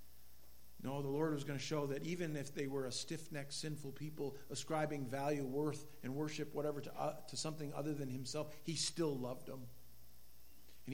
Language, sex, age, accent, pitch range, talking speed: English, male, 50-69, American, 130-205 Hz, 185 wpm